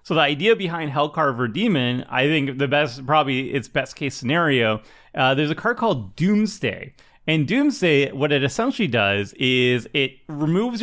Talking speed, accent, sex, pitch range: 165 wpm, American, male, 125-170 Hz